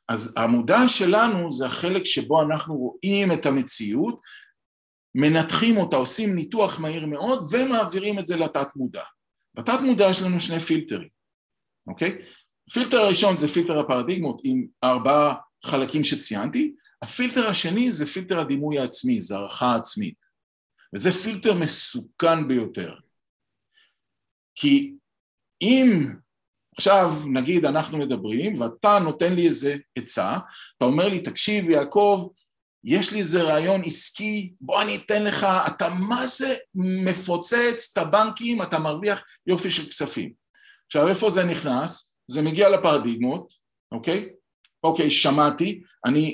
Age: 50-69